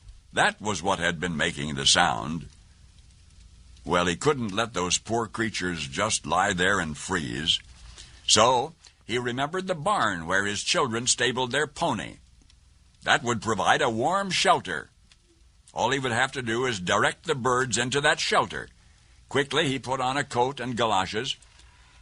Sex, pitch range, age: male, 85-135 Hz, 60-79